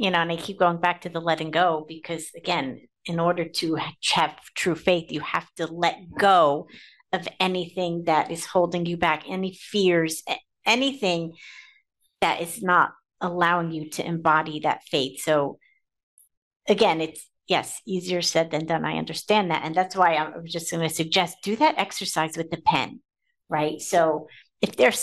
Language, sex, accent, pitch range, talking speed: English, female, American, 165-205 Hz, 175 wpm